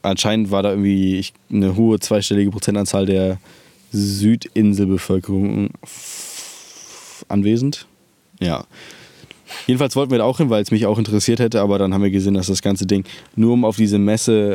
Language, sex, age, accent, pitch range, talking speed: German, male, 20-39, German, 95-110 Hz, 155 wpm